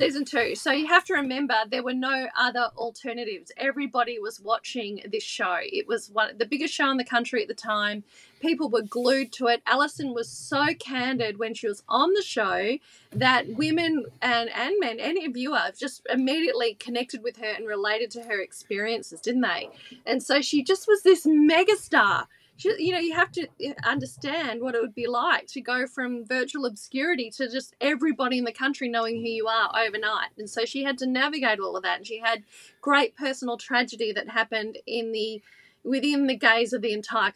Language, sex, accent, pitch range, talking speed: English, female, Australian, 225-280 Hz, 195 wpm